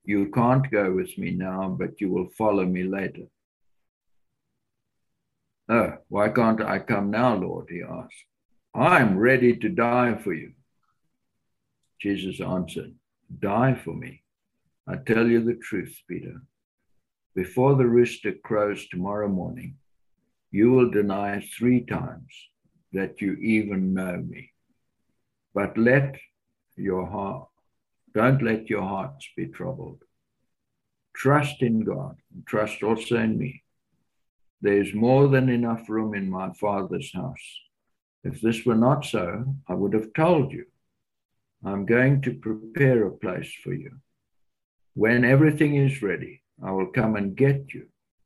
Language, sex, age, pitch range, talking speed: English, male, 60-79, 100-125 Hz, 135 wpm